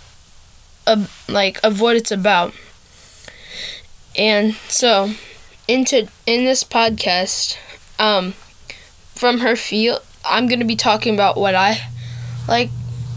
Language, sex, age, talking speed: English, female, 10-29, 115 wpm